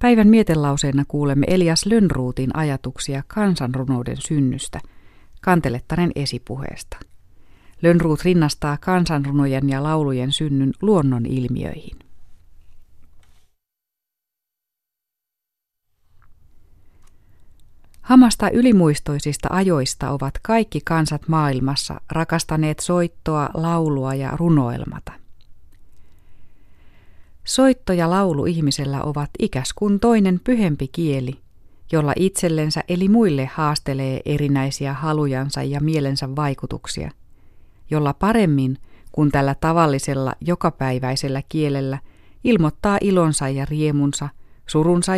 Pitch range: 120-160 Hz